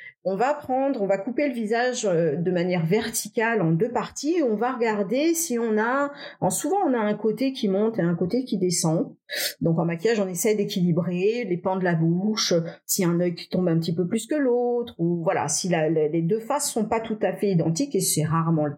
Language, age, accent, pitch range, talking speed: French, 40-59, French, 185-260 Hz, 230 wpm